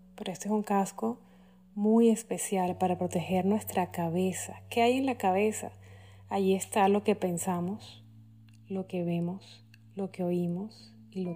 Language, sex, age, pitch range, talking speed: Spanish, female, 30-49, 180-215 Hz, 155 wpm